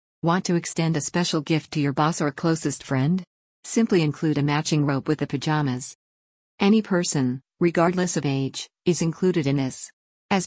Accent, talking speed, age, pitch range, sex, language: American, 170 wpm, 50-69, 140-170 Hz, female, English